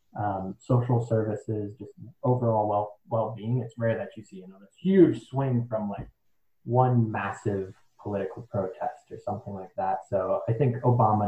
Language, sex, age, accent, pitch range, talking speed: English, male, 20-39, American, 100-125 Hz, 165 wpm